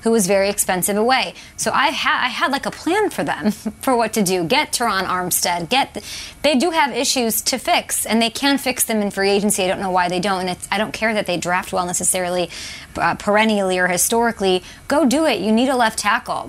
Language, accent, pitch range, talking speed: English, American, 195-260 Hz, 225 wpm